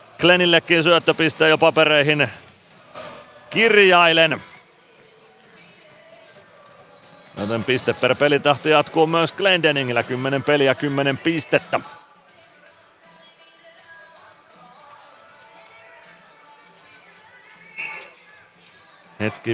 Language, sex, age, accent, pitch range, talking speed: Finnish, male, 40-59, native, 130-165 Hz, 55 wpm